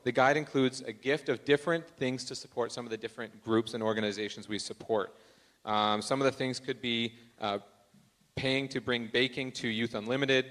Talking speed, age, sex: 195 wpm, 30-49, male